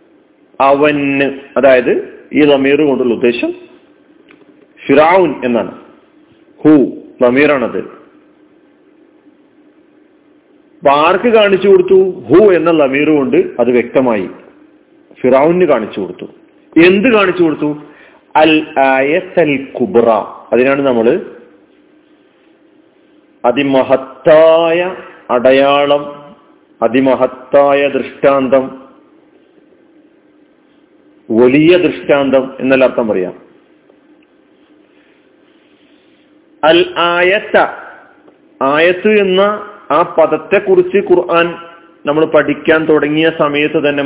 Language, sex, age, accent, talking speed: Malayalam, male, 40-59, native, 70 wpm